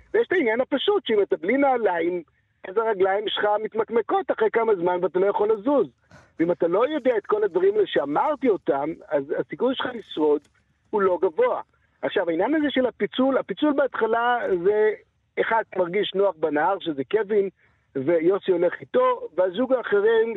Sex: male